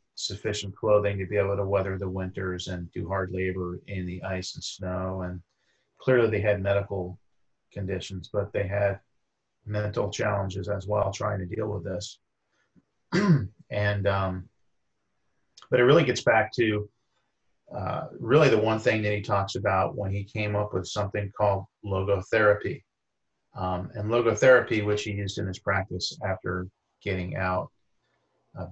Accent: American